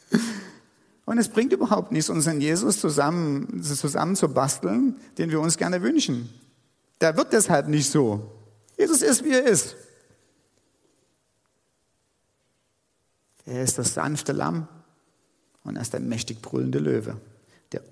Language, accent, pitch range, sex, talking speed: German, German, 130-170 Hz, male, 130 wpm